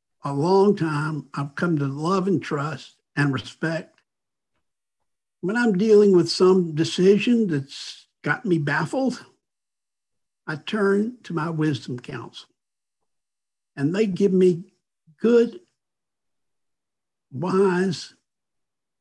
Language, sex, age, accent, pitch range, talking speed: English, male, 60-79, American, 140-185 Hz, 105 wpm